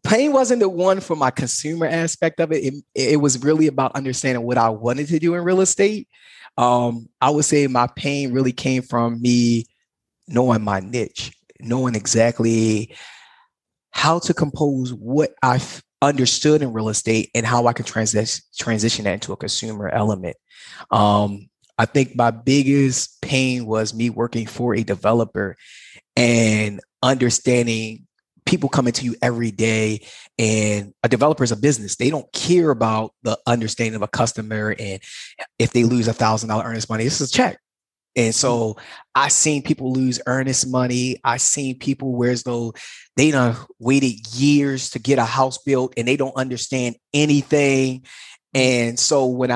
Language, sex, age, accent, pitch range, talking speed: English, male, 20-39, American, 115-140 Hz, 165 wpm